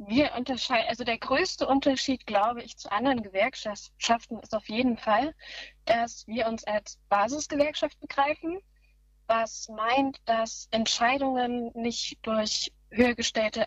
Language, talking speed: German, 125 wpm